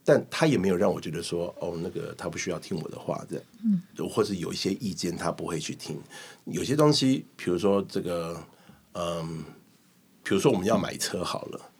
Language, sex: Chinese, male